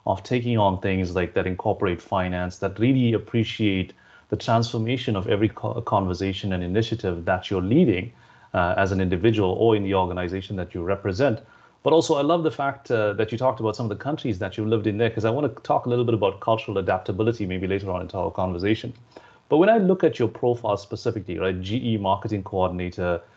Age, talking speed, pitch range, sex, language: 30-49, 210 wpm, 95-115 Hz, male, English